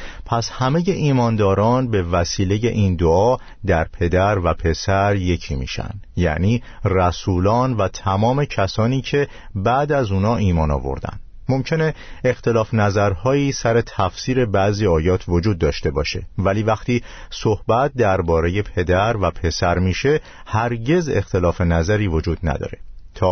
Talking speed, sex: 125 wpm, male